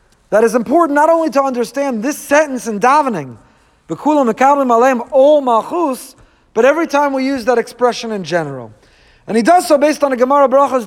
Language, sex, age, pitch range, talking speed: English, male, 40-59, 240-330 Hz, 160 wpm